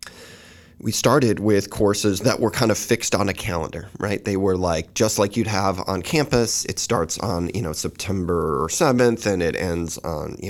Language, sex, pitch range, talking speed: English, male, 90-105 Hz, 195 wpm